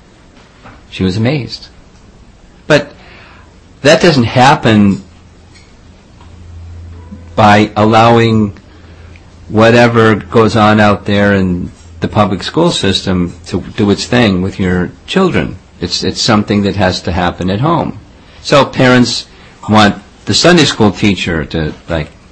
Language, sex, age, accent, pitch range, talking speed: English, male, 50-69, American, 90-115 Hz, 120 wpm